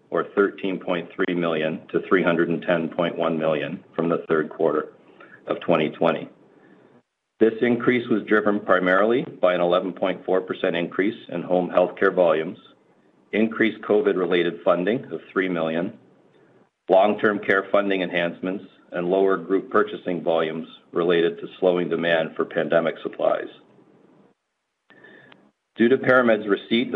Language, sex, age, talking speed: English, male, 40-59, 115 wpm